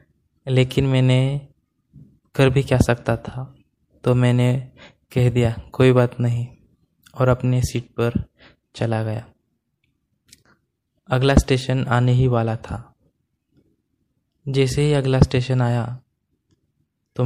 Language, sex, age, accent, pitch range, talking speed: Hindi, male, 20-39, native, 115-130 Hz, 110 wpm